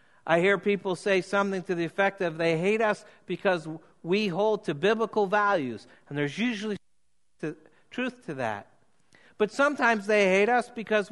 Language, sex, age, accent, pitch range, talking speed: English, male, 60-79, American, 130-195 Hz, 160 wpm